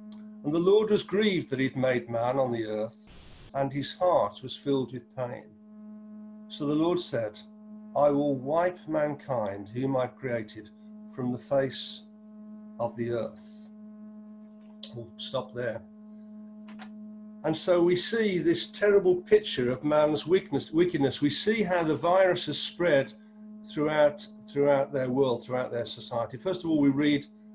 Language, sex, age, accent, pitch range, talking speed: English, male, 50-69, British, 140-215 Hz, 150 wpm